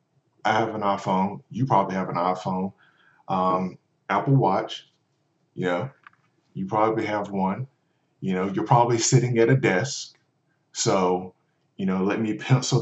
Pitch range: 95-120 Hz